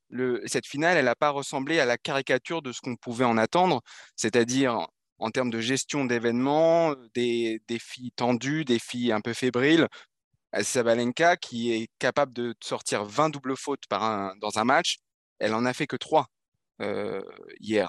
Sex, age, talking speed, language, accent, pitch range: male, 20-39, 180 wpm, French, French, 120-160 Hz